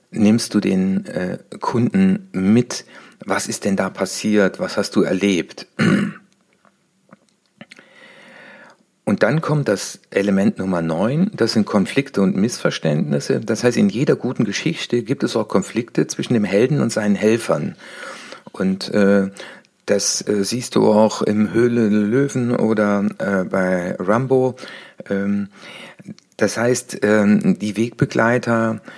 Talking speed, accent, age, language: 130 wpm, German, 60-79, German